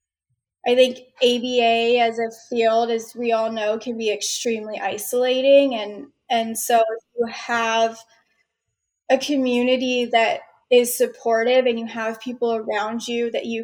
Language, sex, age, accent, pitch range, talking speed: English, female, 10-29, American, 230-265 Hz, 145 wpm